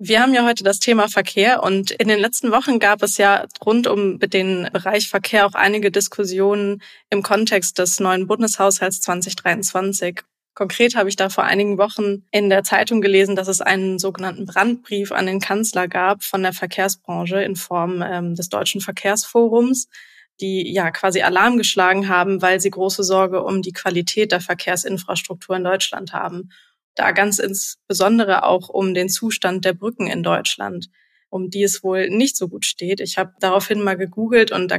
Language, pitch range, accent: German, 185-205 Hz, German